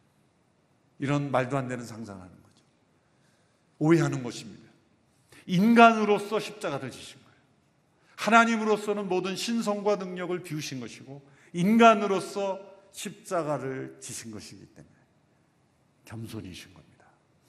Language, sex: Korean, male